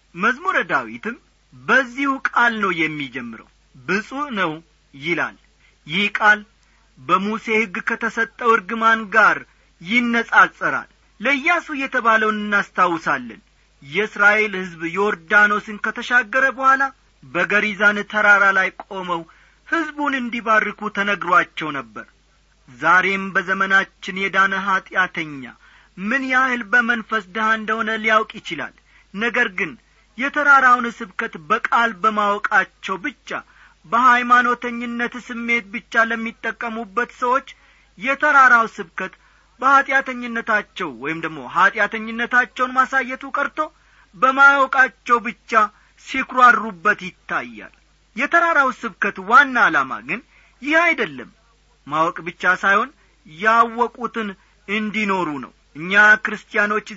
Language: Amharic